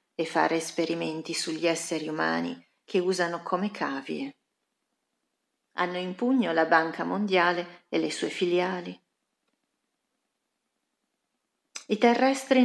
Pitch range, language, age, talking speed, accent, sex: 170-235 Hz, Italian, 40-59, 105 wpm, native, female